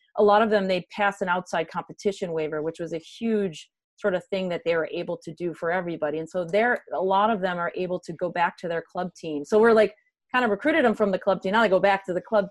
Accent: American